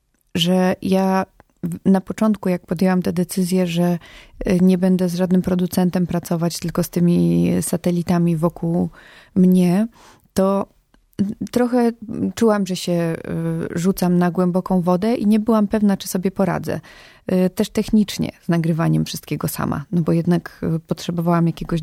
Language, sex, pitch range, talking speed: Polish, female, 170-190 Hz, 130 wpm